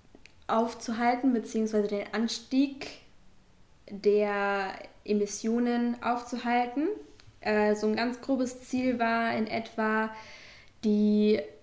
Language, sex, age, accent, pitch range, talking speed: German, female, 10-29, German, 205-235 Hz, 90 wpm